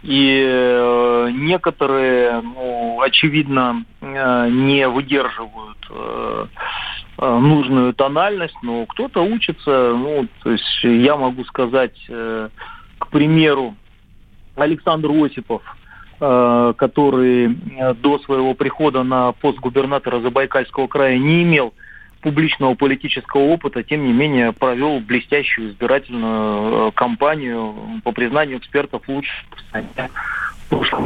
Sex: male